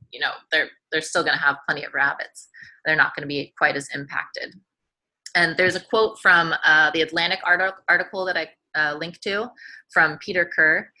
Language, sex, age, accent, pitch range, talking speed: English, female, 20-39, American, 150-185 Hz, 195 wpm